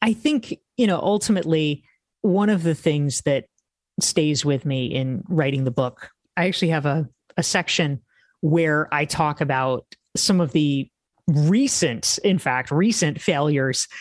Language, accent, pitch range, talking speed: English, American, 150-195 Hz, 150 wpm